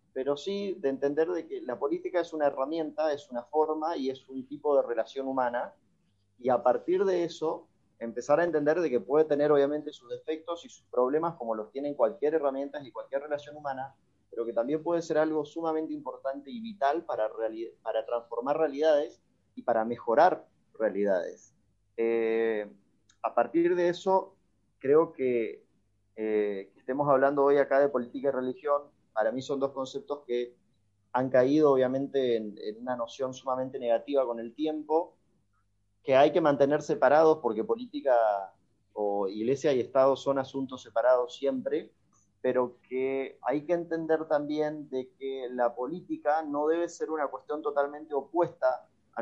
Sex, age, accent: male, 30-49, Argentinian